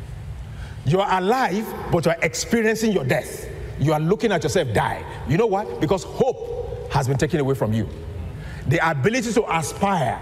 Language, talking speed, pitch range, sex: English, 175 wpm, 160-225 Hz, male